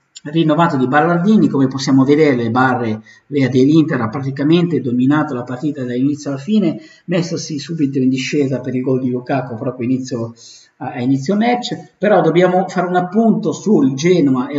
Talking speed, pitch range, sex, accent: 160 wpm, 125-155 Hz, male, native